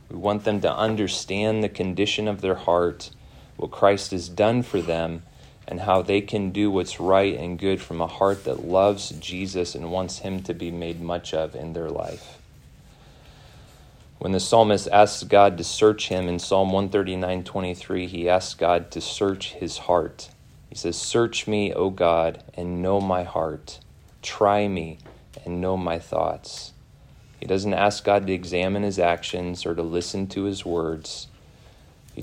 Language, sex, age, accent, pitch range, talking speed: English, male, 30-49, American, 85-100 Hz, 170 wpm